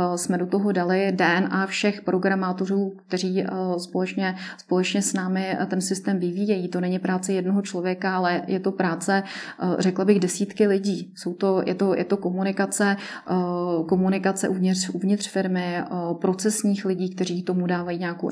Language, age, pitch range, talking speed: Czech, 30-49, 180-200 Hz, 145 wpm